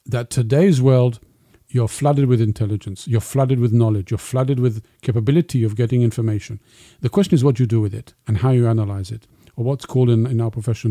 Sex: male